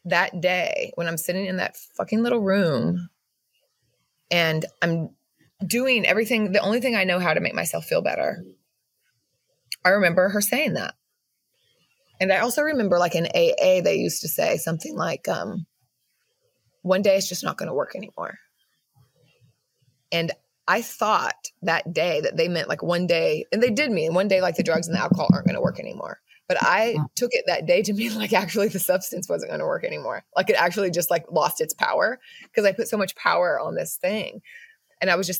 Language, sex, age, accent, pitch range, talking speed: English, female, 20-39, American, 175-240 Hz, 200 wpm